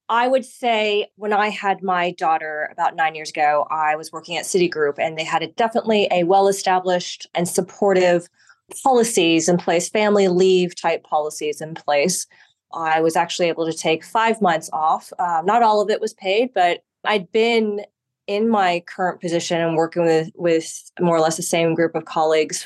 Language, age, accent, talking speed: English, 20-39, American, 185 wpm